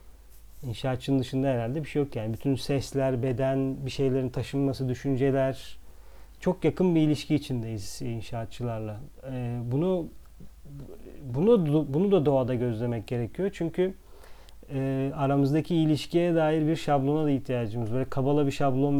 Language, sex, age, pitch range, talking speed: Turkish, male, 40-59, 125-155 Hz, 130 wpm